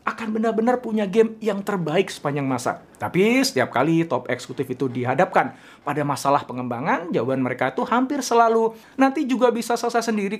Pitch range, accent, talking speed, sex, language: 140-210 Hz, native, 160 wpm, male, Indonesian